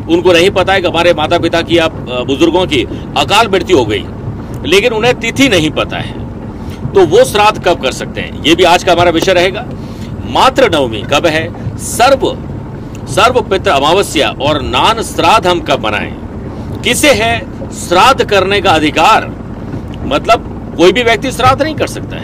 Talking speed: 145 wpm